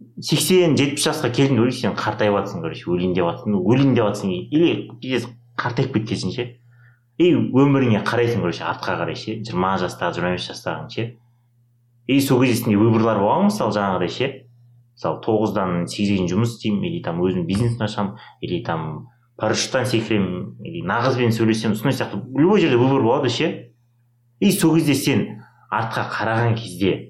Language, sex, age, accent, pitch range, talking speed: Russian, male, 30-49, Turkish, 105-125 Hz, 70 wpm